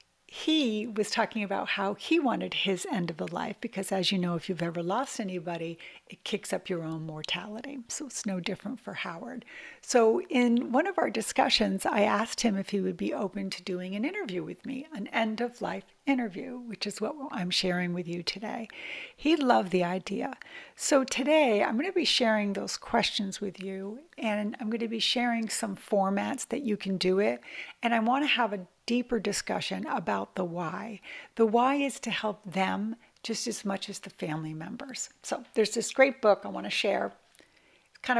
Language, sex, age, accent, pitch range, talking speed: English, female, 60-79, American, 185-230 Hz, 200 wpm